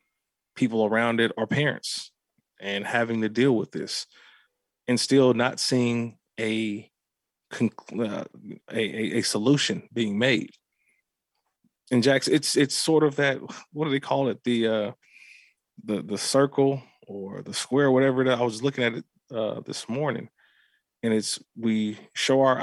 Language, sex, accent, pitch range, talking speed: English, male, American, 110-130 Hz, 160 wpm